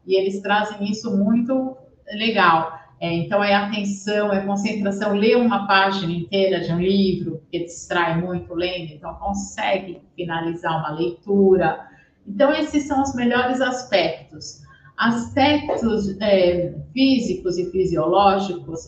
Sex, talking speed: female, 125 wpm